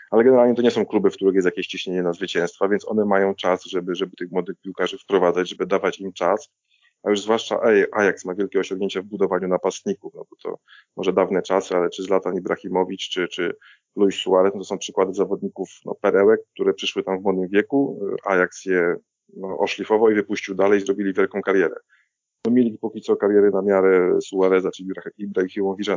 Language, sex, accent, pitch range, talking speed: Polish, male, native, 90-100 Hz, 195 wpm